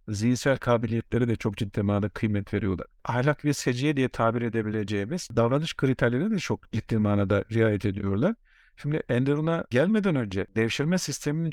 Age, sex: 50-69, male